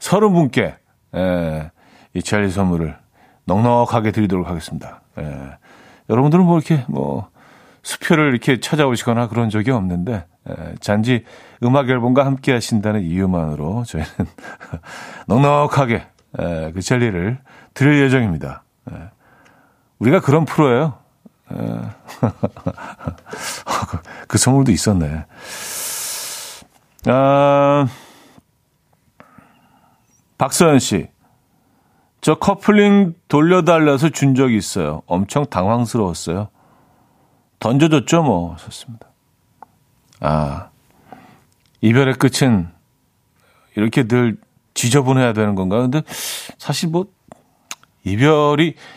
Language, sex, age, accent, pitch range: Korean, male, 50-69, native, 100-145 Hz